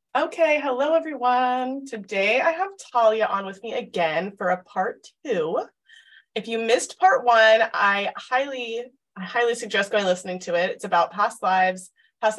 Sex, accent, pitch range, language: female, American, 185-250 Hz, English